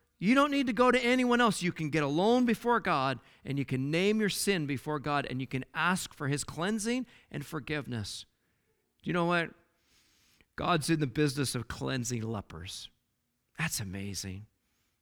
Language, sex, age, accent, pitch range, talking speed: English, male, 50-69, American, 125-200 Hz, 175 wpm